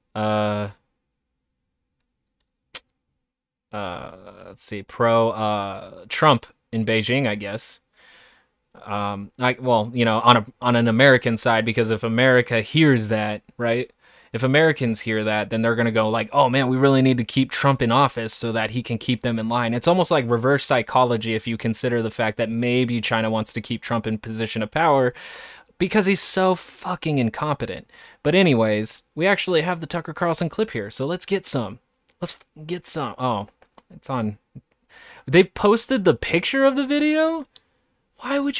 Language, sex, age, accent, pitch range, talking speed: English, male, 20-39, American, 115-185 Hz, 175 wpm